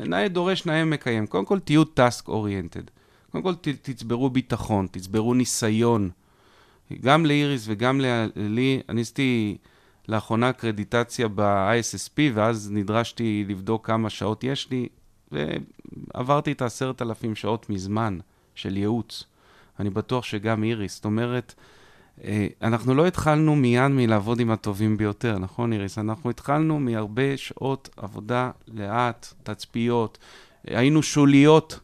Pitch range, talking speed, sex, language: 105-135 Hz, 120 wpm, male, Hebrew